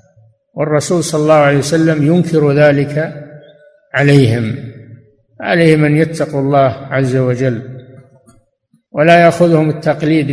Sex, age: male, 60-79